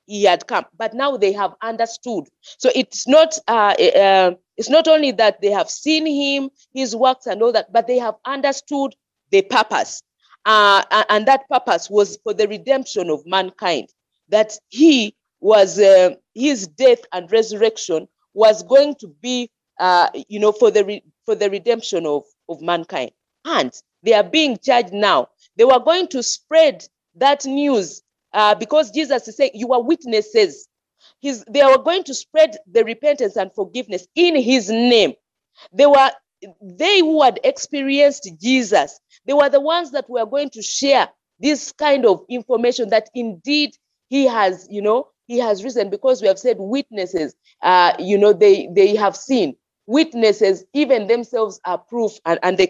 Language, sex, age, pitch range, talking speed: English, female, 40-59, 205-280 Hz, 170 wpm